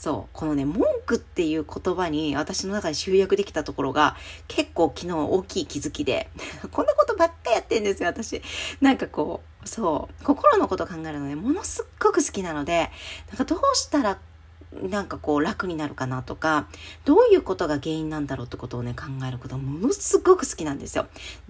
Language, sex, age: Japanese, female, 40-59